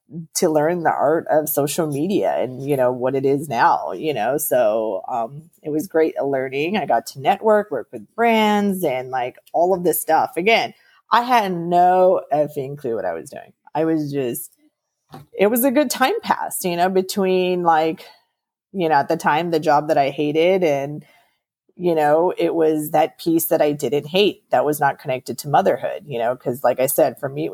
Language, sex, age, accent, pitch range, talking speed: English, female, 30-49, American, 145-180 Hz, 205 wpm